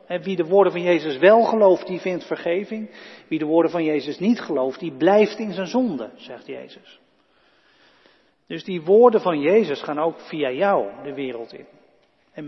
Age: 40-59